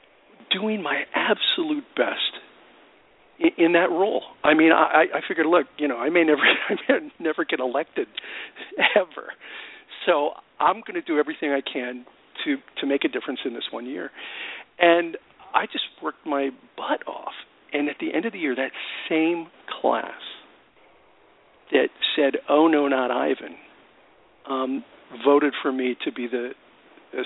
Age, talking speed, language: 50-69, 160 wpm, English